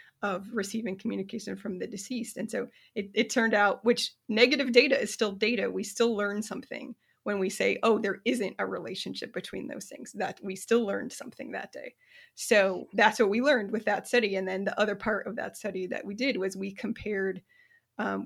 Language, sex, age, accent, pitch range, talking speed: English, female, 30-49, American, 195-235 Hz, 205 wpm